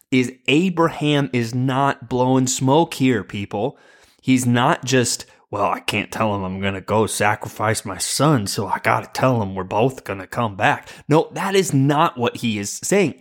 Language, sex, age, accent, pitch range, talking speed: English, male, 20-39, American, 115-145 Hz, 180 wpm